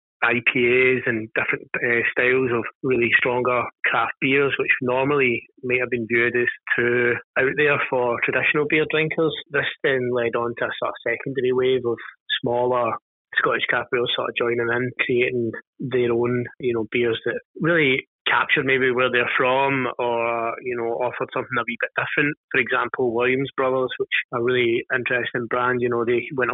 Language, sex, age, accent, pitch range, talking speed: English, male, 20-39, British, 120-130 Hz, 175 wpm